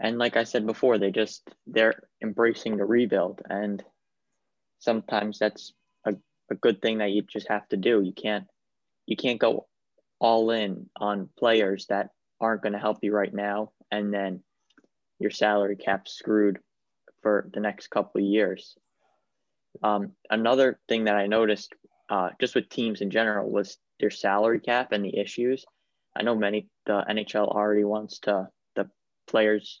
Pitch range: 105-110 Hz